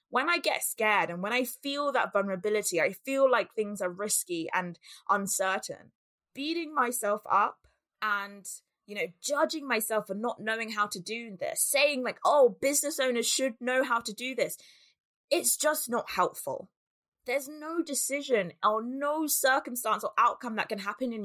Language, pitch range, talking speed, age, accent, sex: English, 200-260 Hz, 170 wpm, 20-39, British, female